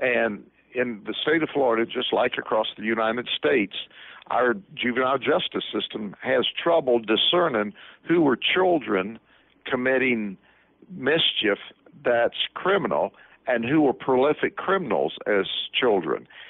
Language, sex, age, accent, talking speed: English, male, 60-79, American, 120 wpm